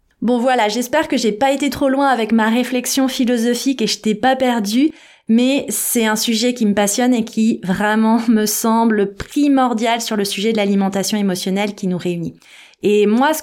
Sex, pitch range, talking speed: female, 205-265 Hz, 190 wpm